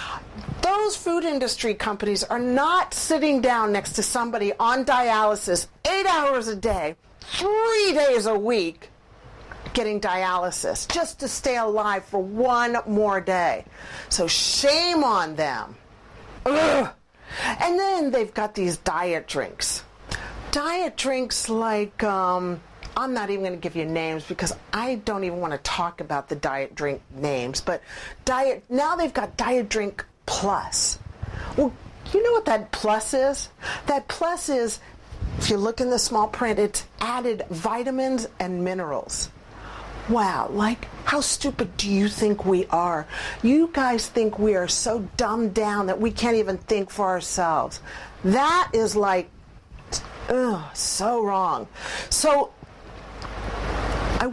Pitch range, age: 195-265 Hz, 50-69